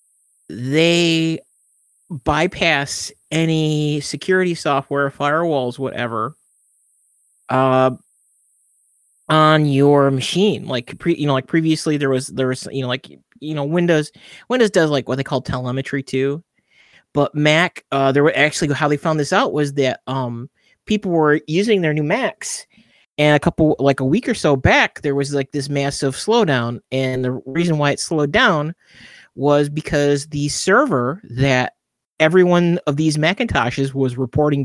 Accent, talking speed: American, 155 wpm